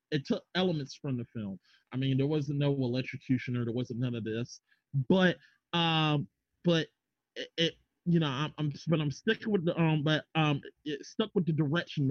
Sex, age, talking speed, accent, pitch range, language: male, 30-49, 200 wpm, American, 135-170 Hz, English